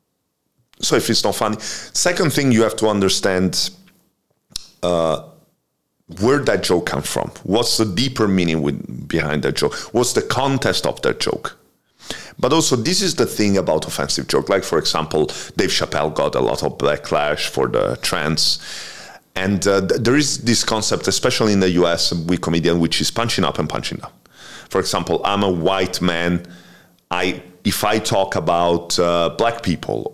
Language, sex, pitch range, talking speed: English, male, 85-110 Hz, 175 wpm